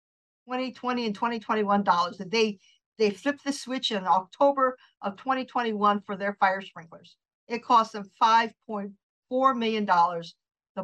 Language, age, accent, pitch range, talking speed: English, 50-69, American, 205-255 Hz, 140 wpm